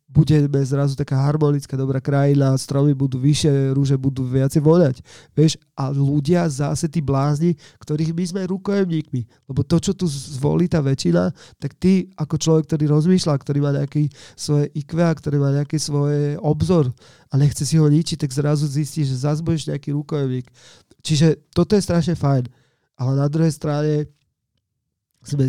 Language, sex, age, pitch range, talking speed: Slovak, male, 30-49, 135-150 Hz, 160 wpm